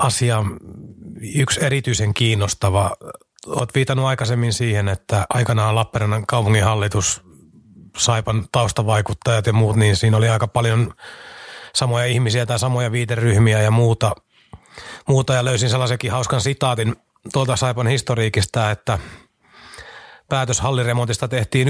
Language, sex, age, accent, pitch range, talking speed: Finnish, male, 30-49, native, 110-130 Hz, 110 wpm